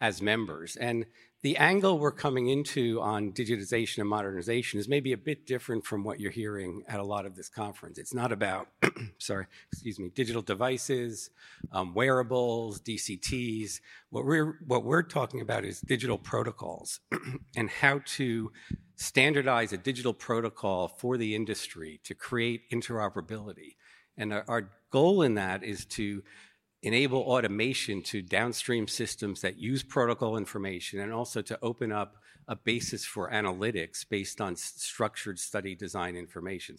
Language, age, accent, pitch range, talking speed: English, 50-69, American, 100-125 Hz, 150 wpm